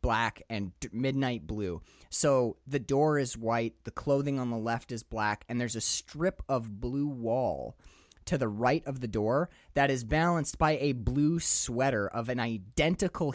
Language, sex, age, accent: English, male, 20-39, American